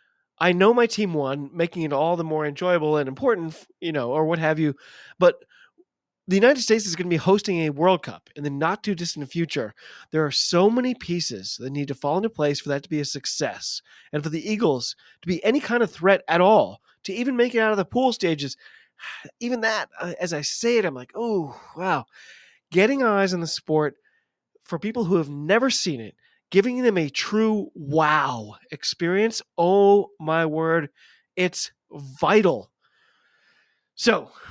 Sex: male